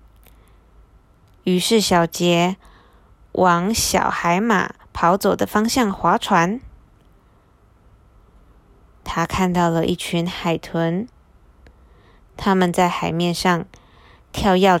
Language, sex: Chinese, female